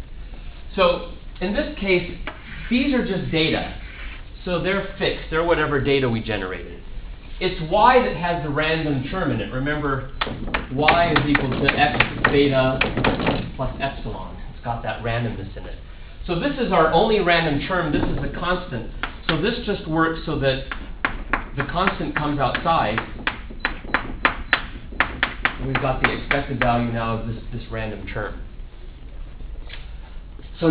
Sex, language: male, English